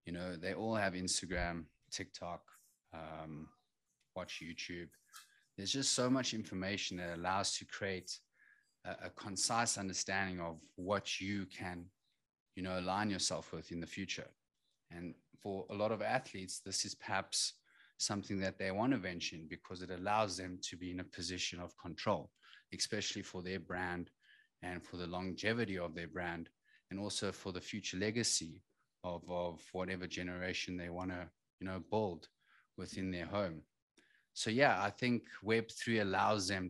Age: 30-49